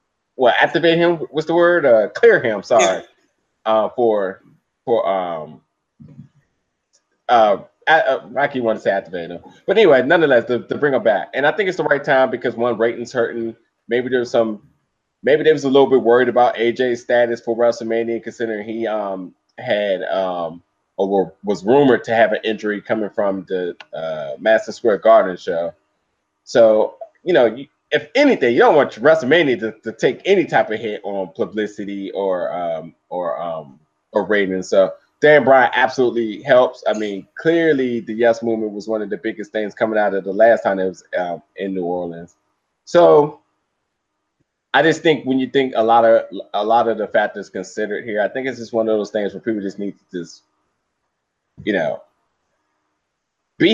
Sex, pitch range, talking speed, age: male, 100-130 Hz, 180 wpm, 20-39